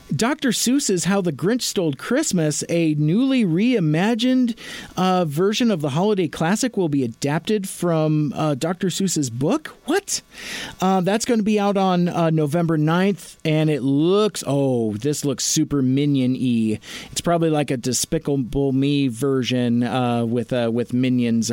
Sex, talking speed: male, 155 wpm